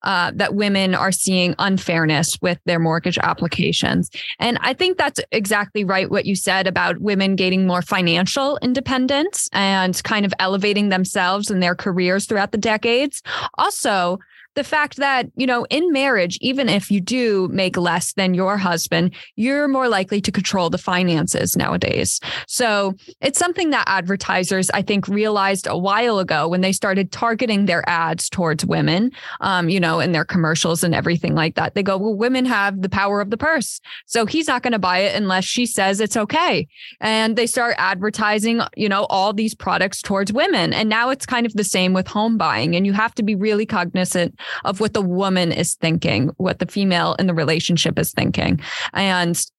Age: 20-39